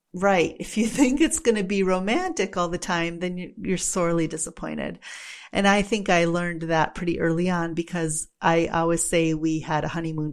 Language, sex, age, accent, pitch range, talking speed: English, female, 40-59, American, 170-200 Hz, 190 wpm